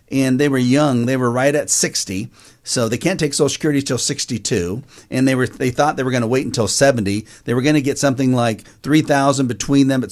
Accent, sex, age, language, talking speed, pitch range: American, male, 50-69, English, 230 wpm, 125-150 Hz